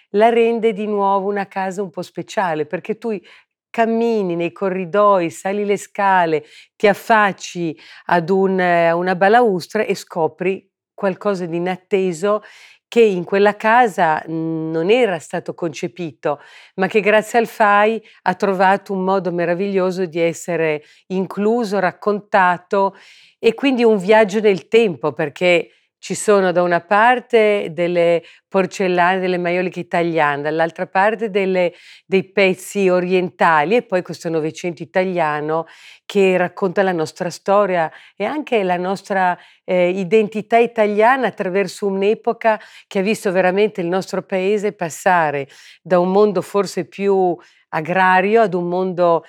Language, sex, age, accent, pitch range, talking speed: Italian, female, 50-69, native, 175-205 Hz, 130 wpm